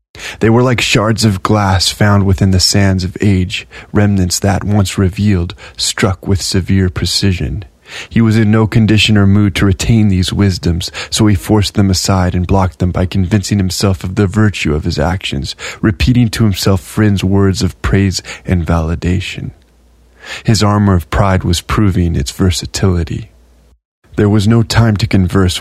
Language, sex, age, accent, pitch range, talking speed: English, male, 20-39, American, 90-105 Hz, 165 wpm